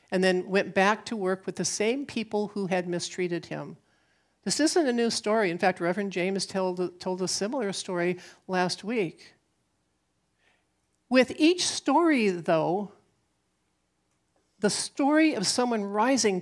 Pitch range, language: 165-210 Hz, English